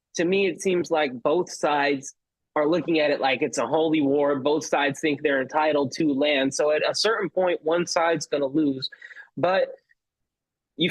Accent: American